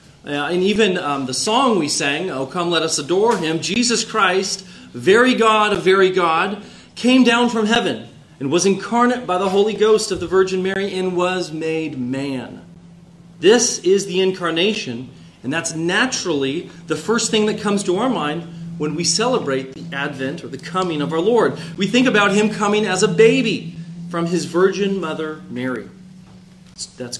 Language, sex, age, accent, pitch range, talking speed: English, male, 30-49, American, 160-220 Hz, 175 wpm